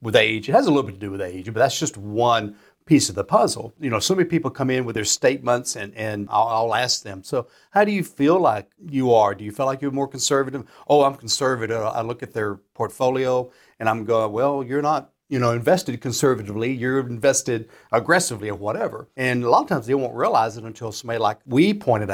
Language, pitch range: English, 110-130 Hz